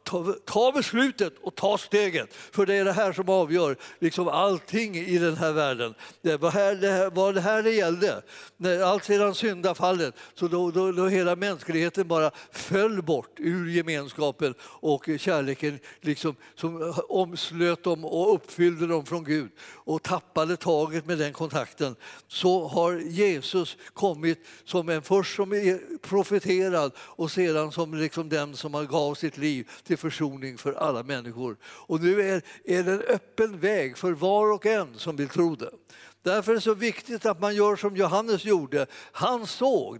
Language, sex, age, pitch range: Swedish, male, 60-79, 155-195 Hz